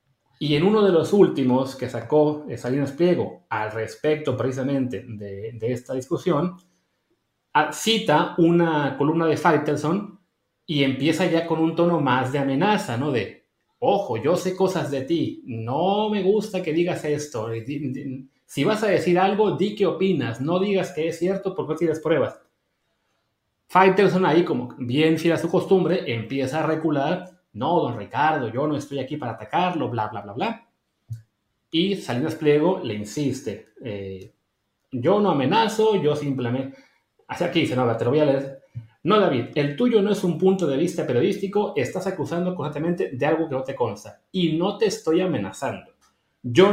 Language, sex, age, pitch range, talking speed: Spanish, male, 30-49, 130-180 Hz, 170 wpm